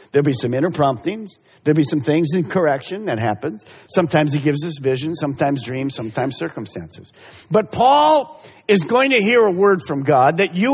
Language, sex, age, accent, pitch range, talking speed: English, male, 50-69, American, 130-200 Hz, 190 wpm